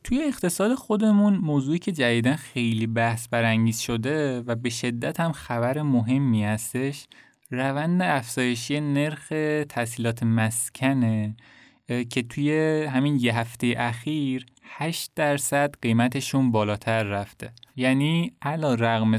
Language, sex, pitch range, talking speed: Persian, male, 115-140 Hz, 115 wpm